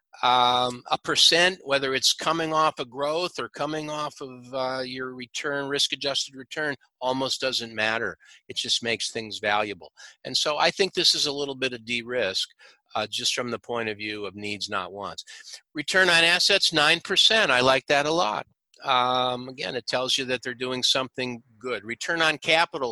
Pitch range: 120-155 Hz